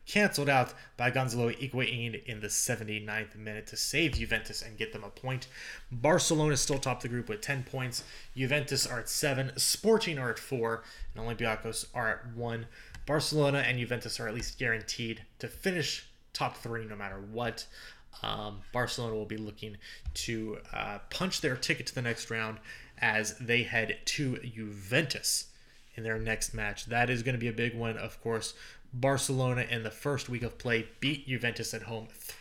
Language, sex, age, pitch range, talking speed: English, male, 20-39, 110-130 Hz, 180 wpm